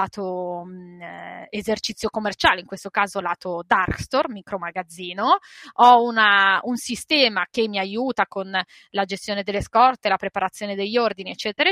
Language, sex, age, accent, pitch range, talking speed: Italian, female, 20-39, native, 195-245 Hz, 135 wpm